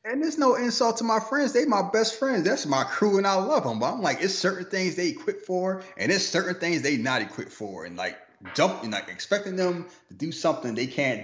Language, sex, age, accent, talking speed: English, male, 30-49, American, 245 wpm